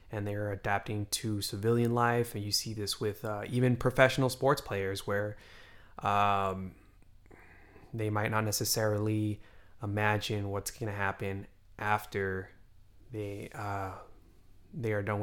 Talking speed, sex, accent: 130 wpm, male, American